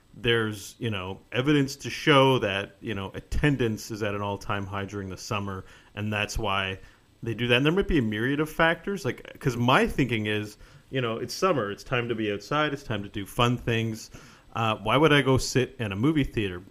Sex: male